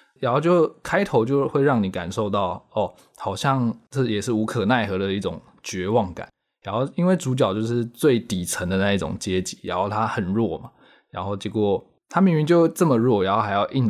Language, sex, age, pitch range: Chinese, male, 20-39, 105-140 Hz